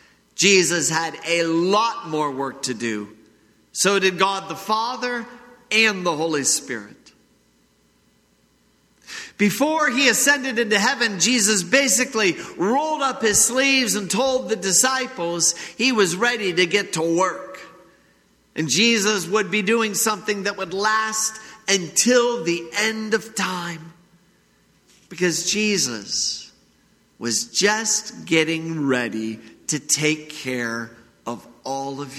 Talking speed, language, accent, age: 120 wpm, English, American, 50-69